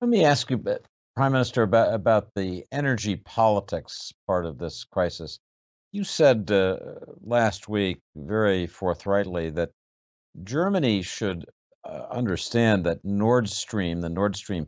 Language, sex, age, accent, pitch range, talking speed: English, male, 60-79, American, 80-110 Hz, 145 wpm